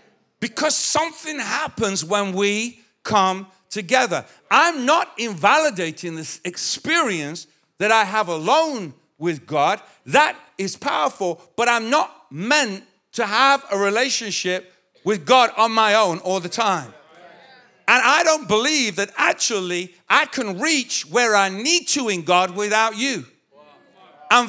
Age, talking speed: 50-69, 135 wpm